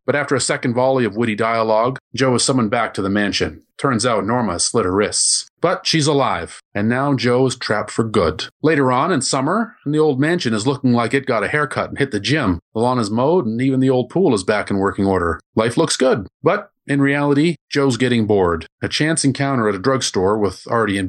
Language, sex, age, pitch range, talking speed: English, male, 40-59, 105-140 Hz, 235 wpm